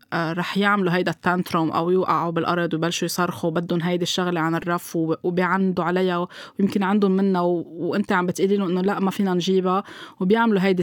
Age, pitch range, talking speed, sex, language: 20-39, 175-205 Hz, 165 wpm, female, Arabic